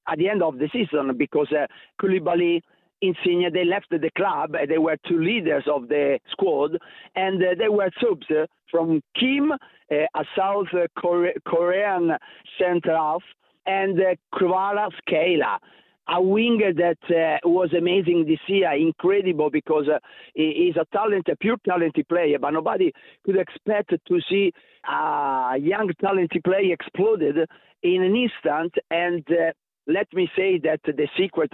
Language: English